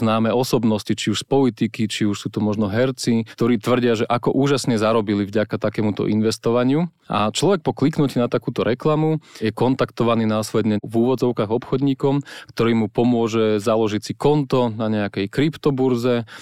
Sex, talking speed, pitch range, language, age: male, 155 wpm, 105-125 Hz, Slovak, 30-49